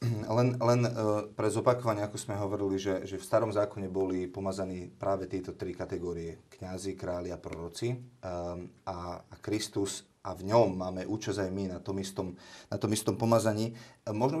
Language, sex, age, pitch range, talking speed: Slovak, male, 30-49, 100-120 Hz, 170 wpm